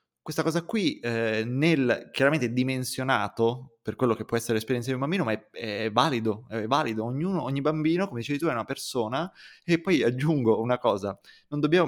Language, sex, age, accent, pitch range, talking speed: Italian, male, 20-39, native, 115-150 Hz, 190 wpm